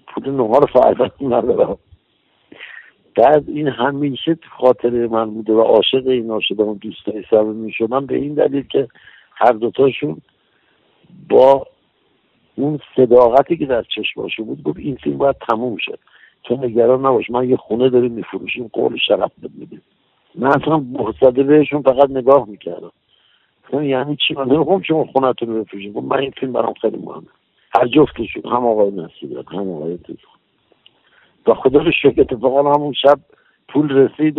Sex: male